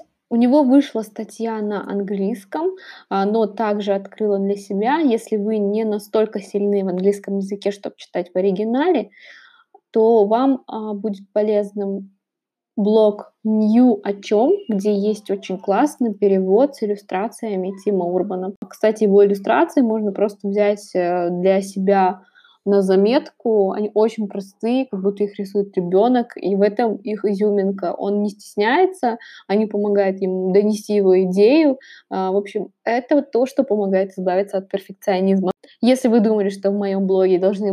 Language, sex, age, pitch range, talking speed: Russian, female, 20-39, 195-225 Hz, 145 wpm